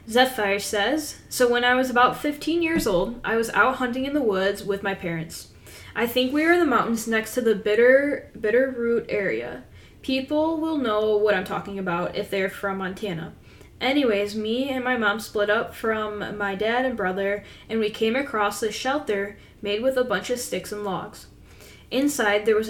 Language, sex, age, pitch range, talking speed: English, female, 10-29, 200-250 Hz, 195 wpm